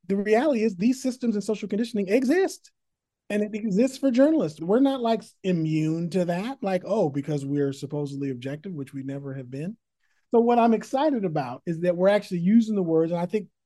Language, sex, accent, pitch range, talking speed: English, male, American, 155-210 Hz, 200 wpm